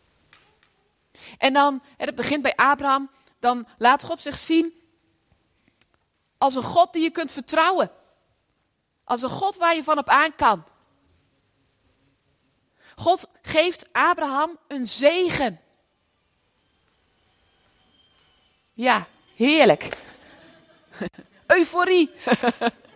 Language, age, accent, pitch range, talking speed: Dutch, 40-59, Dutch, 260-330 Hz, 95 wpm